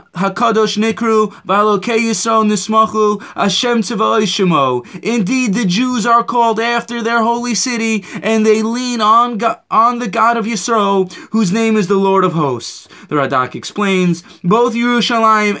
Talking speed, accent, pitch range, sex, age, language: 120 wpm, American, 195-235 Hz, male, 20-39, English